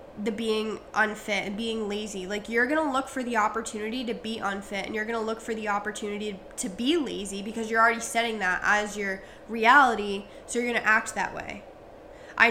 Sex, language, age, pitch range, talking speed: female, English, 10-29, 205-240 Hz, 195 wpm